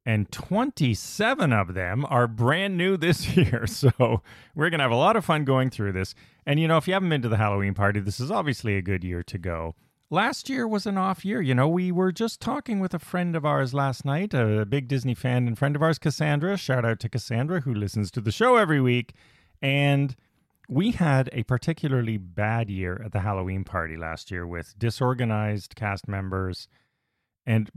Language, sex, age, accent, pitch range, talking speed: English, male, 30-49, American, 105-150 Hz, 210 wpm